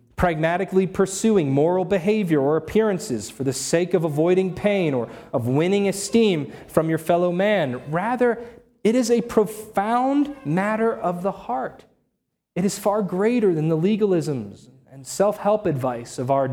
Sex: male